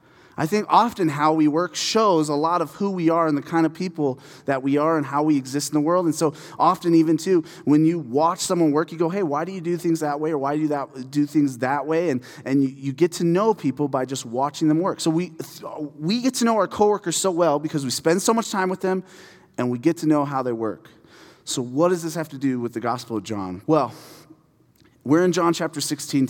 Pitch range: 145-180 Hz